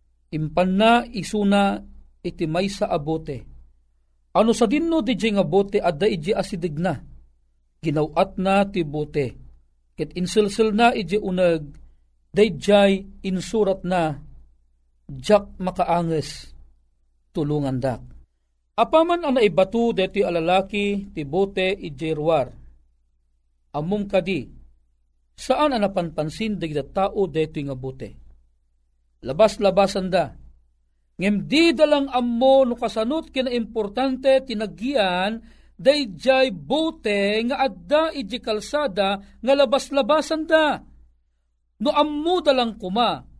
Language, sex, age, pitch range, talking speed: Filipino, male, 40-59, 145-240 Hz, 100 wpm